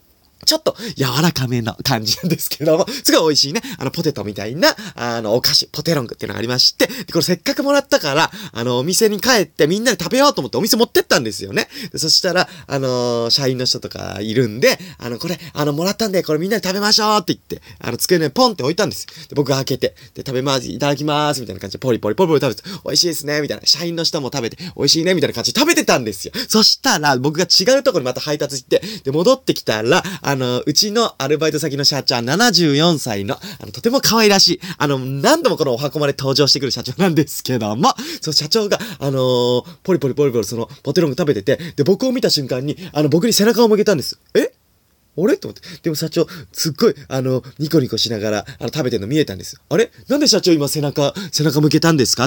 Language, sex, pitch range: Japanese, male, 130-185 Hz